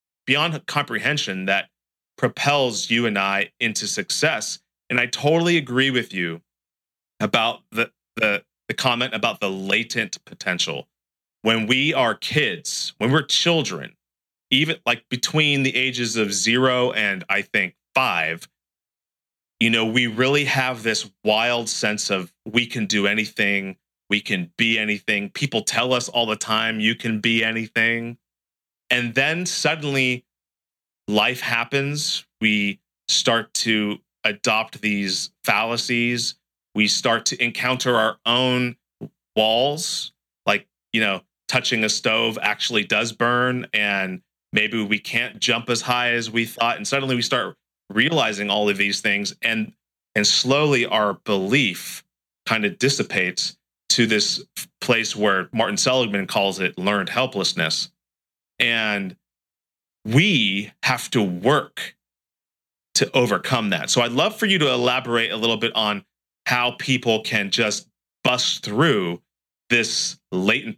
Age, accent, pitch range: 30-49, American, 105-125 Hz